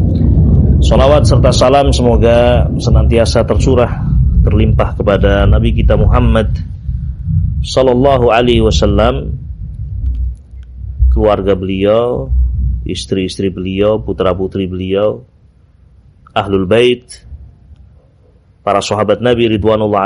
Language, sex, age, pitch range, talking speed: Indonesian, male, 30-49, 90-110 Hz, 80 wpm